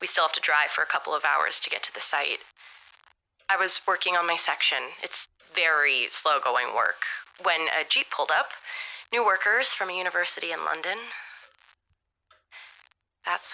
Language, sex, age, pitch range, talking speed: English, female, 20-39, 155-230 Hz, 175 wpm